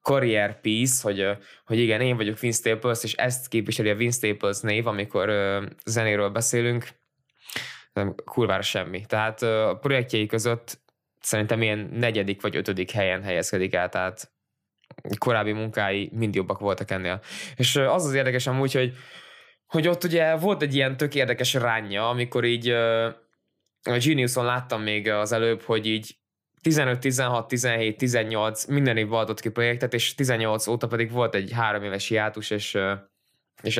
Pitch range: 105-125 Hz